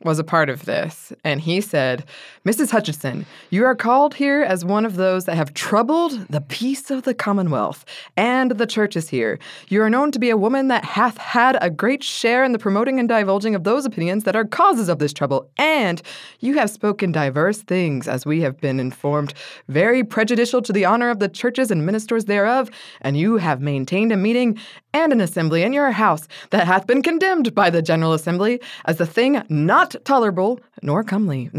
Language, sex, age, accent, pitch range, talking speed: English, female, 20-39, American, 165-250 Hz, 205 wpm